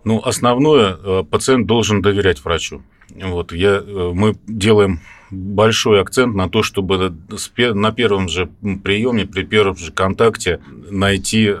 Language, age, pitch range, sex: Russian, 30-49, 90-105 Hz, male